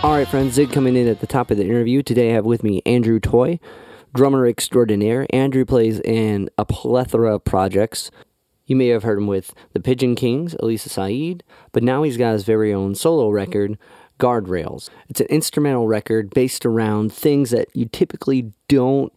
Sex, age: male, 30-49